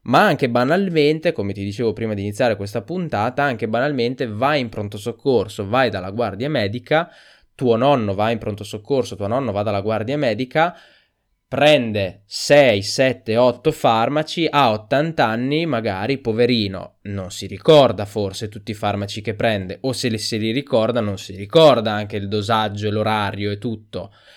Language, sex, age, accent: Italian, male, 20-39, native